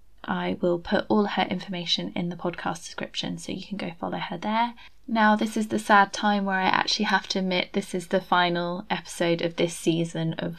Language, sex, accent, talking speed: English, female, British, 215 wpm